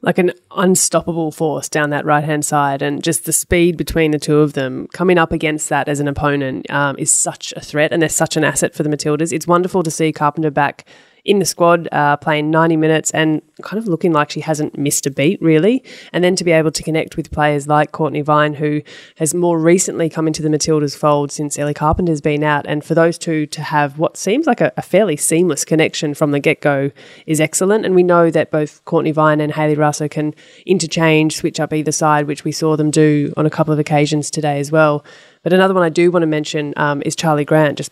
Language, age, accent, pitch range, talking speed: English, 20-39, Australian, 150-165 Hz, 235 wpm